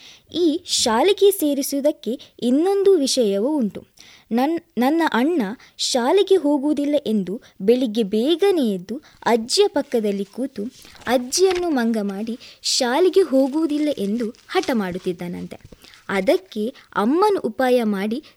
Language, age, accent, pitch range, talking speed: Kannada, 20-39, native, 220-315 Hz, 95 wpm